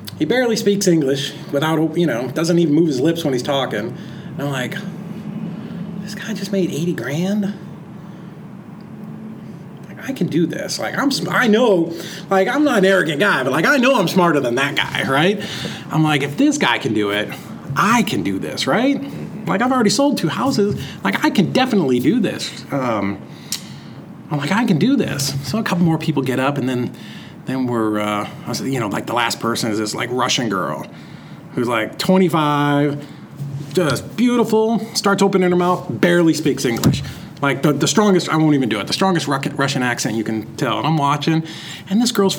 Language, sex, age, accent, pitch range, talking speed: English, male, 30-49, American, 145-215 Hz, 190 wpm